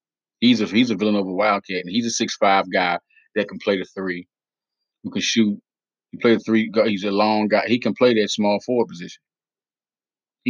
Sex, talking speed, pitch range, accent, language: male, 215 wpm, 100-115 Hz, American, English